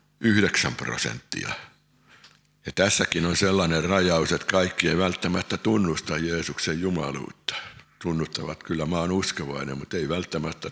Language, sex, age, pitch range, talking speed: Finnish, male, 60-79, 75-95 Hz, 130 wpm